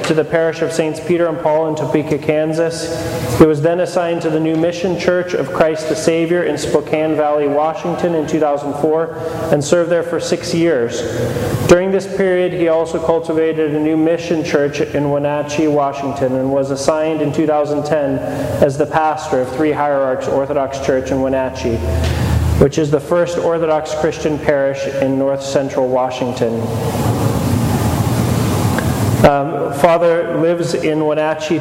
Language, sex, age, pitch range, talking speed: English, male, 30-49, 135-160 Hz, 150 wpm